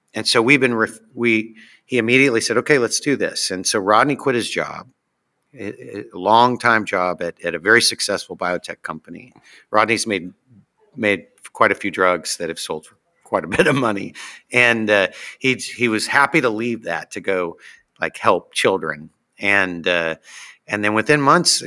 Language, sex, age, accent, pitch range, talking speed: English, male, 50-69, American, 95-110 Hz, 185 wpm